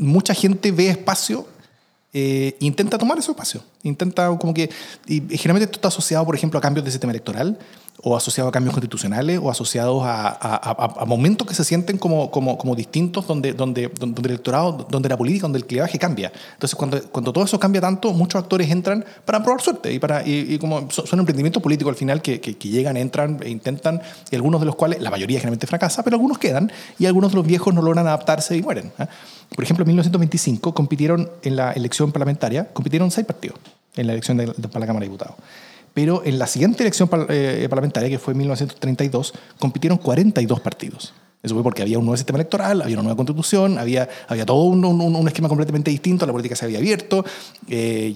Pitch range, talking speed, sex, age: 130-180 Hz, 210 wpm, male, 30-49